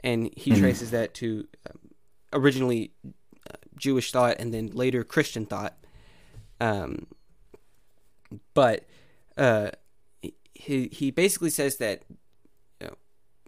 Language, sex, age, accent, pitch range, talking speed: English, male, 20-39, American, 110-130 Hz, 100 wpm